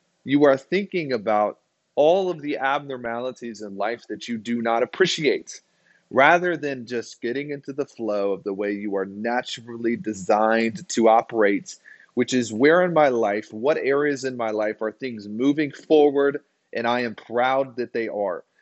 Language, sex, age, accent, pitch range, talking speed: English, male, 30-49, American, 110-145 Hz, 170 wpm